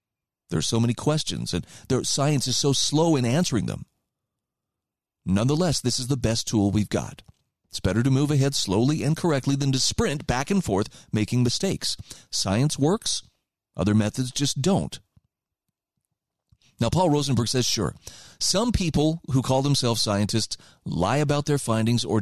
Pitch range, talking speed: 115-150 Hz, 160 wpm